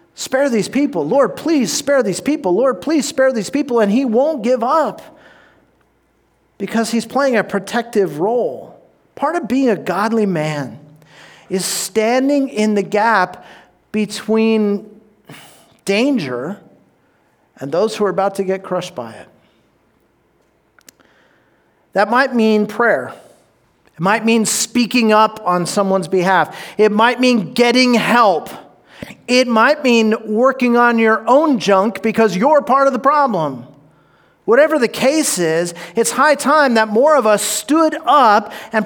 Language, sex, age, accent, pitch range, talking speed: English, male, 40-59, American, 195-255 Hz, 140 wpm